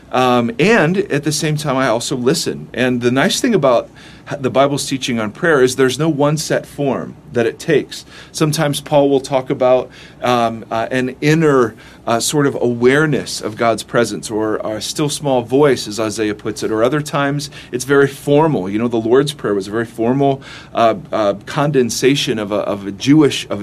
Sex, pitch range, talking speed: male, 120-145 Hz, 190 wpm